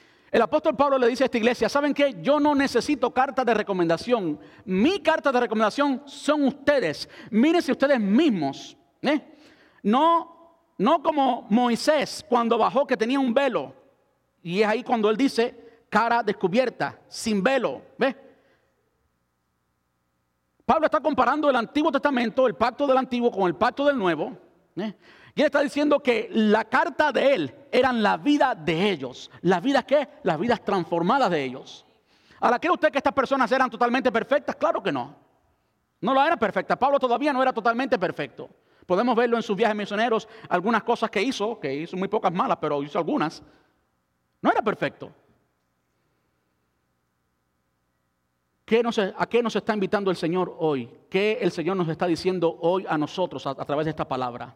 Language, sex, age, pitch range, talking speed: Spanish, male, 50-69, 170-270 Hz, 165 wpm